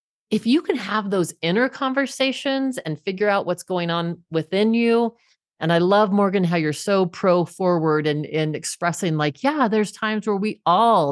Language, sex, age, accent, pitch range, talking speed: English, female, 40-59, American, 175-225 Hz, 190 wpm